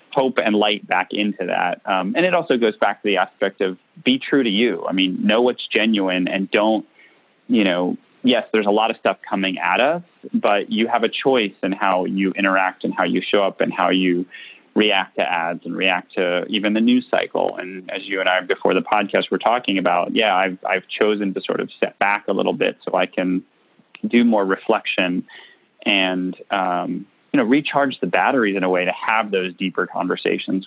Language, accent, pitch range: English, American, 95-105 Hz